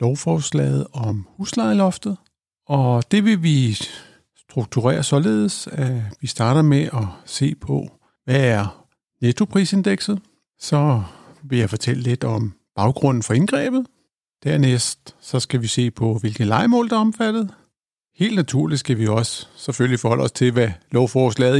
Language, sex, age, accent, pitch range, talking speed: Danish, male, 60-79, native, 120-150 Hz, 140 wpm